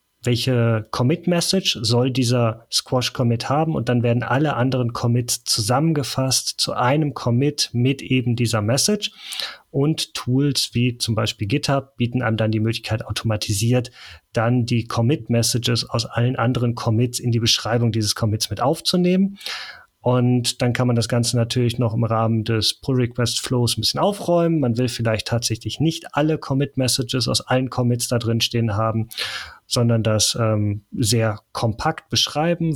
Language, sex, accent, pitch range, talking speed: German, male, German, 115-130 Hz, 150 wpm